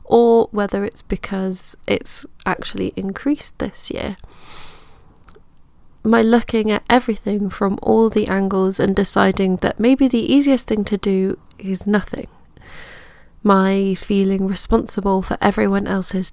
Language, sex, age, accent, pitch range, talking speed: English, female, 20-39, British, 195-230 Hz, 125 wpm